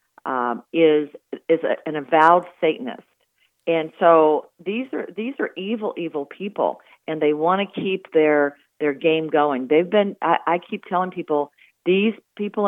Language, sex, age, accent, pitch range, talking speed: English, female, 50-69, American, 155-185 Hz, 155 wpm